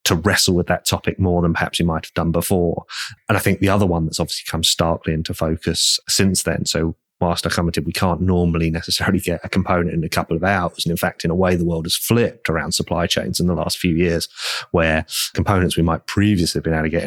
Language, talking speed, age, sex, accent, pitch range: English, 250 wpm, 30-49, male, British, 80-90 Hz